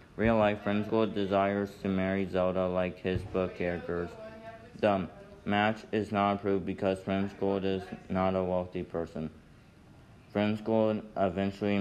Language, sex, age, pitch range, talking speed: English, male, 30-49, 90-100 Hz, 125 wpm